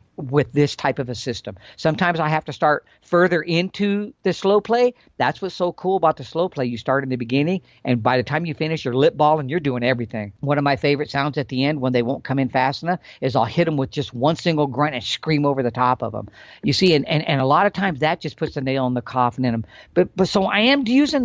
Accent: American